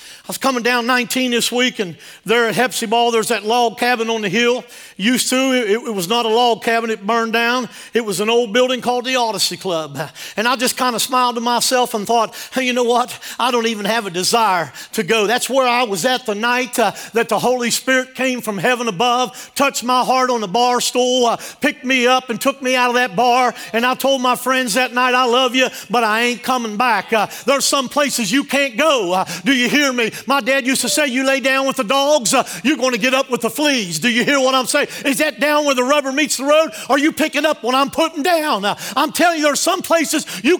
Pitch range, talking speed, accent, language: 235-295 Hz, 255 wpm, American, English